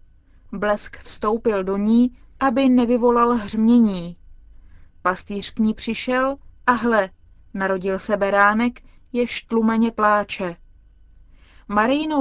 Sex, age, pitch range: female, 20-39, 190-240 Hz